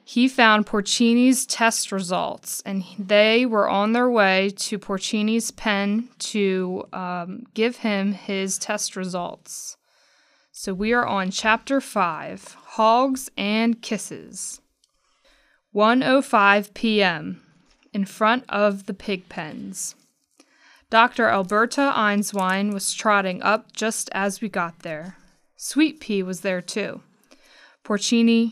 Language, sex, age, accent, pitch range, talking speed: English, female, 20-39, American, 190-225 Hz, 120 wpm